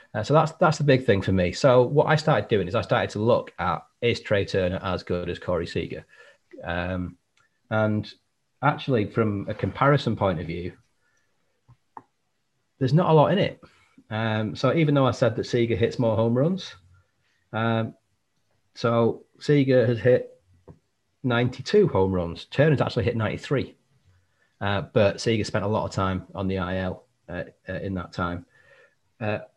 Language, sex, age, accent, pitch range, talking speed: English, male, 30-49, British, 95-125 Hz, 170 wpm